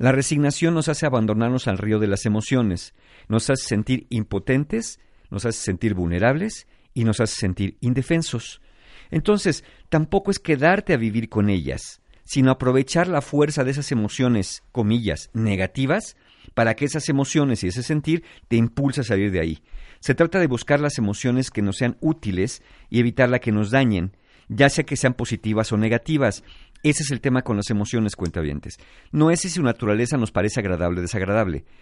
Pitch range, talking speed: 105-145 Hz, 175 wpm